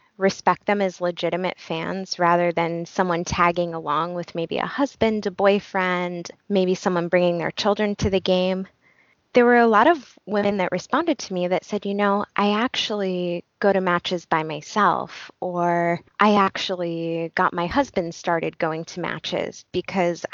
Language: English